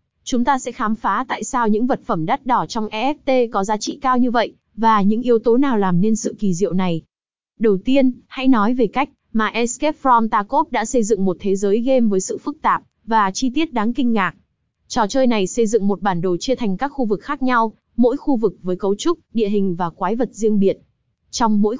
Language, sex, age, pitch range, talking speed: Vietnamese, female, 20-39, 205-255 Hz, 240 wpm